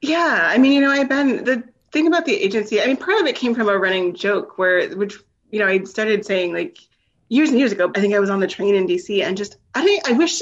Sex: female